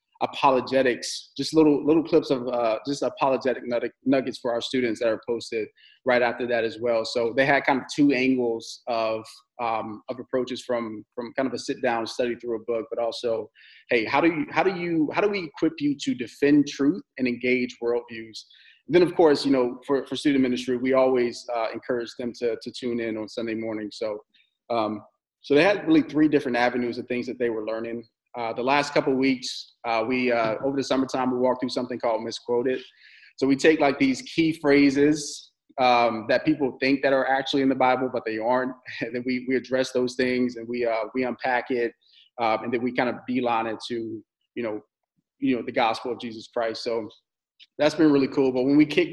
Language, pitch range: English, 120-145 Hz